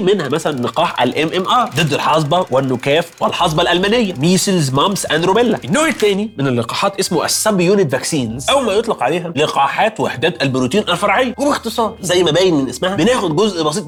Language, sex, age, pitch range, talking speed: Arabic, male, 30-49, 140-225 Hz, 160 wpm